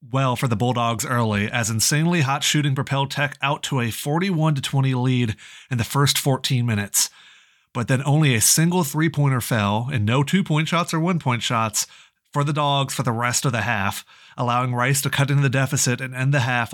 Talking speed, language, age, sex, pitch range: 195 wpm, English, 30-49, male, 130-160 Hz